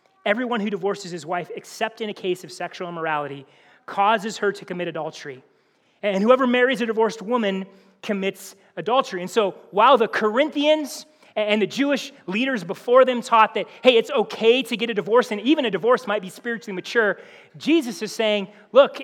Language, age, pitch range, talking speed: English, 30-49, 195-250 Hz, 180 wpm